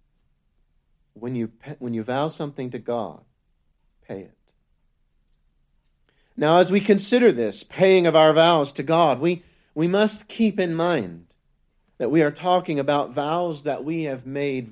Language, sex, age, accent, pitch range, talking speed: English, male, 40-59, American, 155-220 Hz, 150 wpm